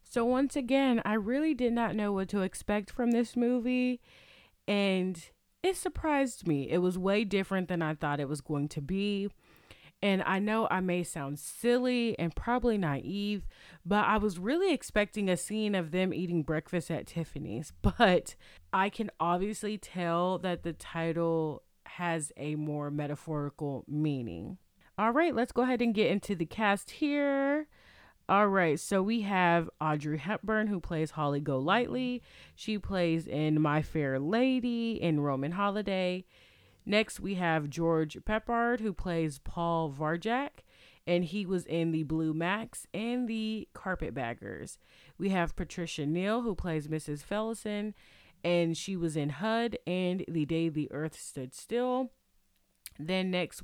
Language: English